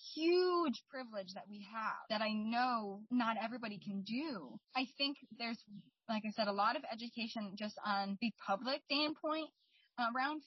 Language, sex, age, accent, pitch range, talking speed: English, female, 20-39, American, 215-275 Hz, 160 wpm